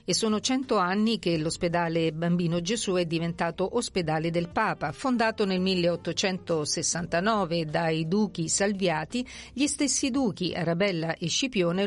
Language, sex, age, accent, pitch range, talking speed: Italian, female, 50-69, native, 170-215 Hz, 125 wpm